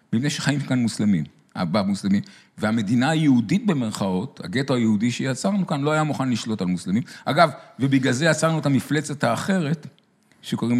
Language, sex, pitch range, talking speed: Hebrew, male, 120-180 Hz, 150 wpm